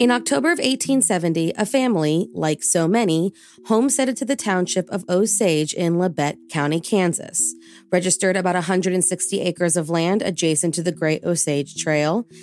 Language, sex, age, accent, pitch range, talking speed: English, female, 30-49, American, 165-230 Hz, 150 wpm